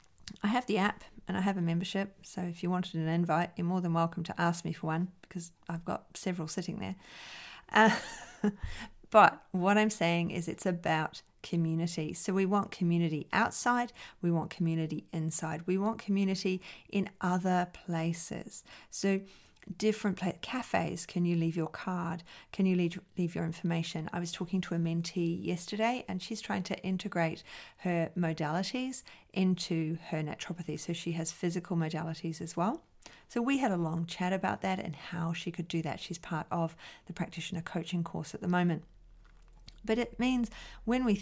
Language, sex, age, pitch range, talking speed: English, female, 40-59, 170-195 Hz, 175 wpm